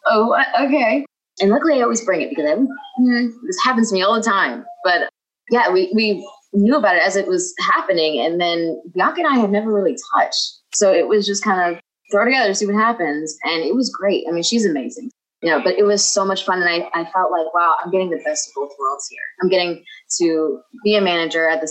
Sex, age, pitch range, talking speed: female, 20-39, 155-225 Hz, 240 wpm